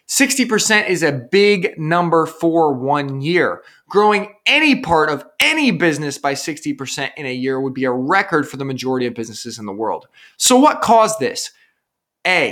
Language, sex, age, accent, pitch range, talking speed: English, male, 20-39, American, 135-205 Hz, 170 wpm